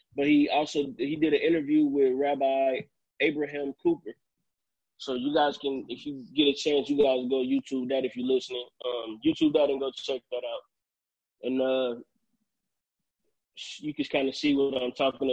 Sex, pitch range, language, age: male, 130-155 Hz, English, 20-39